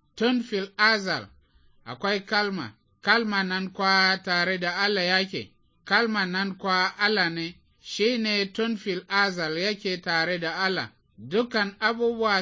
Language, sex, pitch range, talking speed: English, male, 165-205 Hz, 110 wpm